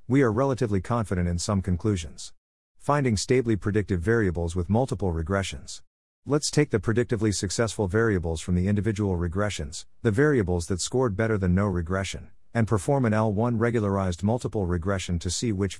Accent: American